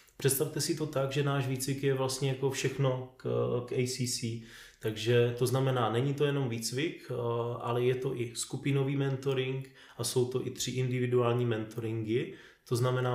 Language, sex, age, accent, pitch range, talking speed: Czech, male, 20-39, native, 115-130 Hz, 165 wpm